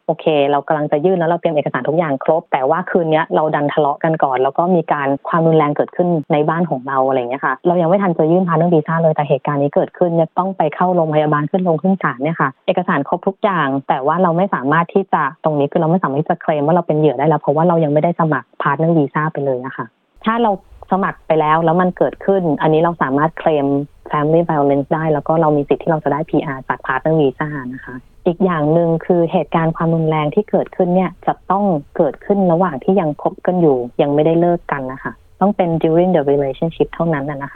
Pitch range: 145-175 Hz